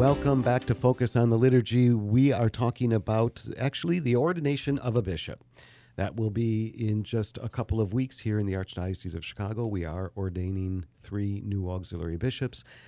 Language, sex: English, male